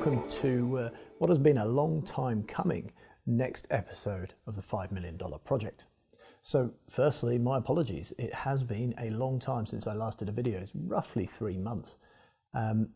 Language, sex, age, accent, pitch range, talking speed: English, male, 40-59, British, 100-120 Hz, 170 wpm